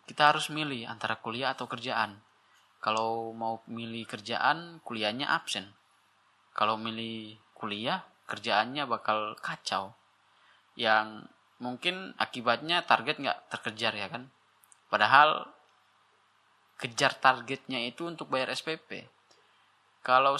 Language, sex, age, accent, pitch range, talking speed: Indonesian, male, 10-29, native, 120-150 Hz, 105 wpm